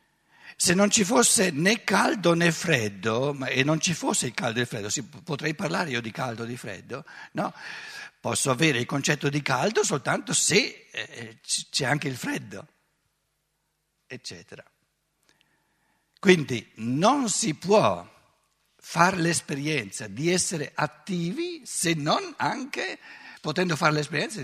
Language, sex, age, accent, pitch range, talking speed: Italian, male, 60-79, native, 130-180 Hz, 135 wpm